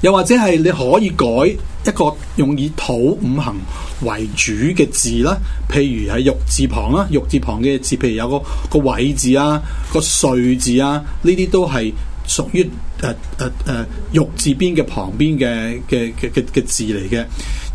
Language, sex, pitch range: Chinese, male, 120-165 Hz